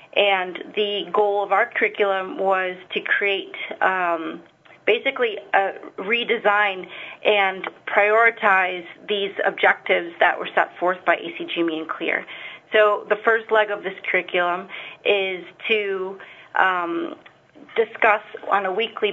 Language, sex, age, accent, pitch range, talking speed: English, female, 30-49, American, 185-210 Hz, 120 wpm